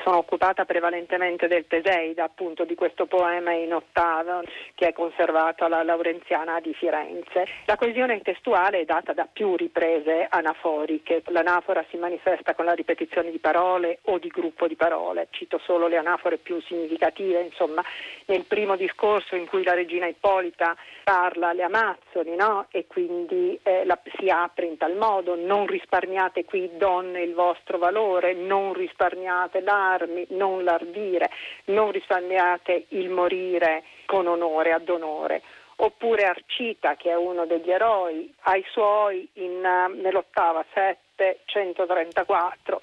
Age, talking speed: 40-59, 145 wpm